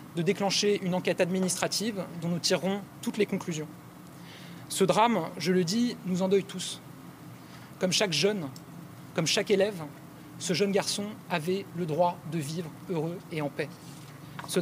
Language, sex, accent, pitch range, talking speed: French, male, French, 165-200 Hz, 155 wpm